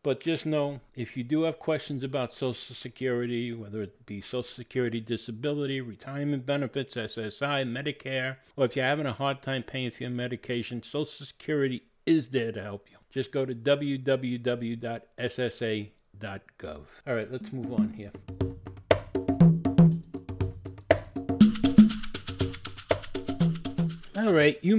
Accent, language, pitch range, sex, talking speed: American, English, 120-150 Hz, male, 125 wpm